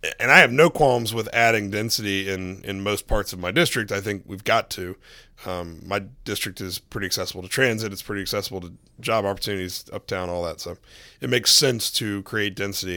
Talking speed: 205 wpm